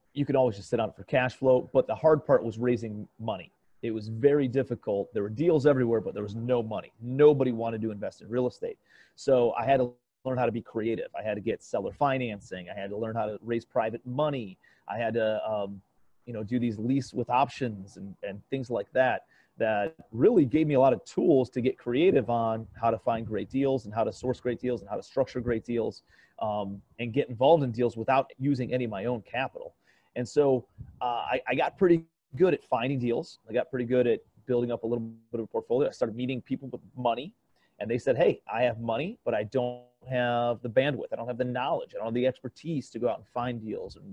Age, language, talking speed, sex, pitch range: 30-49, English, 240 wpm, male, 115-130 Hz